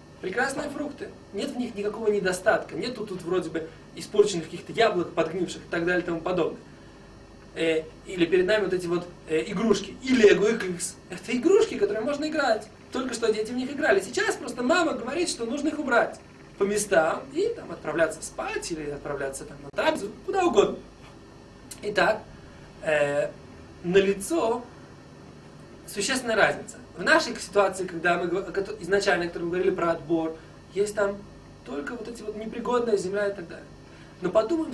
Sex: male